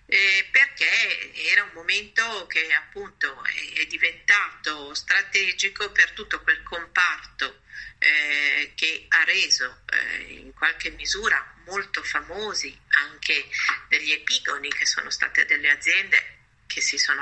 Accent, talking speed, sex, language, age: native, 125 wpm, female, Italian, 50-69